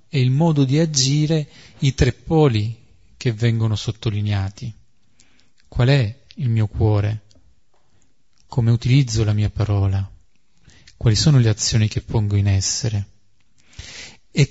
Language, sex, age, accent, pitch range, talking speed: Italian, male, 40-59, native, 110-135 Hz, 125 wpm